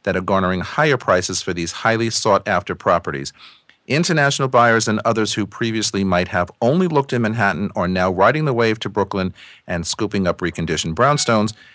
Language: English